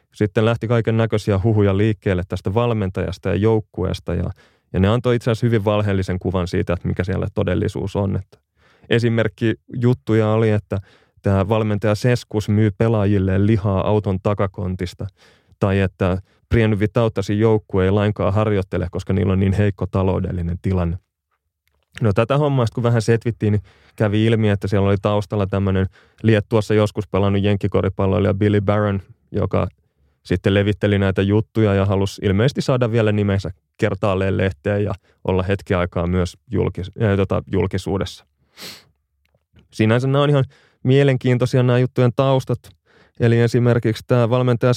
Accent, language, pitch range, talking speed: native, Finnish, 95-115 Hz, 145 wpm